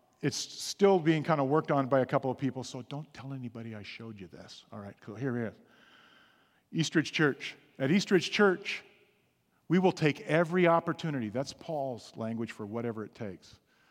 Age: 50-69